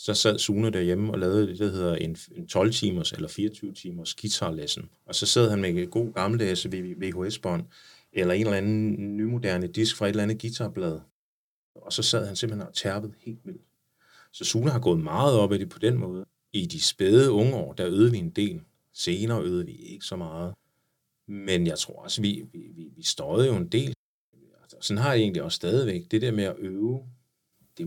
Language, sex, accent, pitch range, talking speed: Danish, male, native, 100-125 Hz, 205 wpm